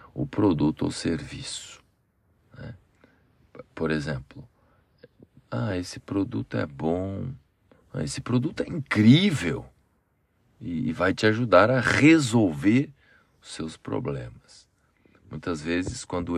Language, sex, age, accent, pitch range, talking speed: Portuguese, male, 40-59, Brazilian, 80-125 Hz, 105 wpm